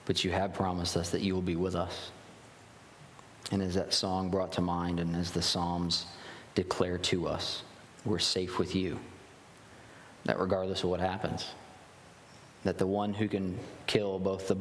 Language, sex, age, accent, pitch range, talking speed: English, male, 20-39, American, 90-100 Hz, 175 wpm